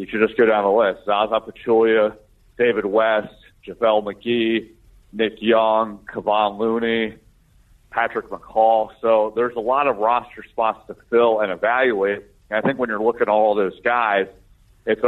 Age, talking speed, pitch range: 40-59, 165 wpm, 100-120 Hz